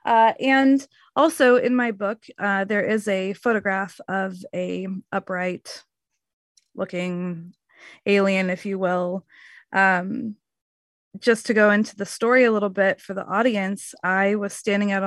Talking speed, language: 145 wpm, English